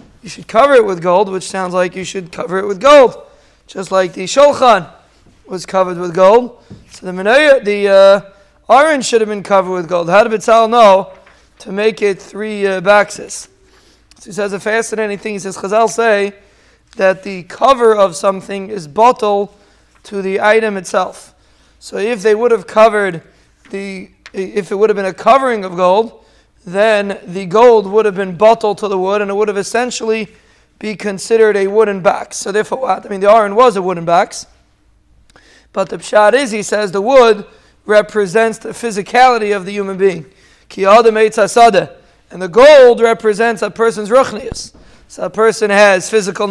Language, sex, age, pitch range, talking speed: English, male, 20-39, 195-225 Hz, 185 wpm